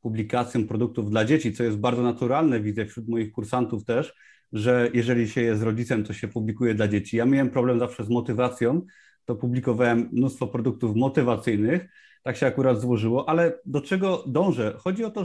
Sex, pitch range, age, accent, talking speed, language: male, 120-160 Hz, 30-49, native, 175 wpm, Polish